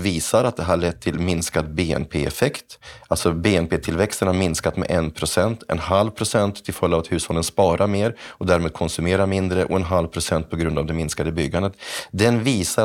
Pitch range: 85-100 Hz